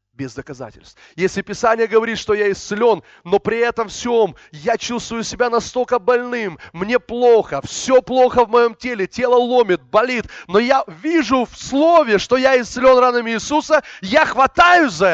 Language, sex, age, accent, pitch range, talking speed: Russian, male, 20-39, native, 200-300 Hz, 160 wpm